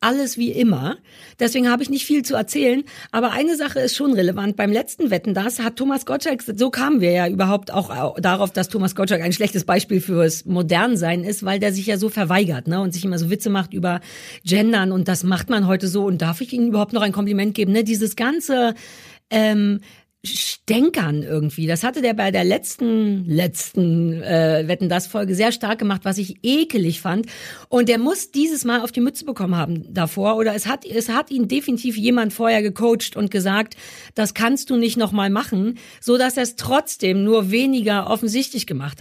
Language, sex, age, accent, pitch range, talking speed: German, female, 40-59, German, 190-245 Hz, 200 wpm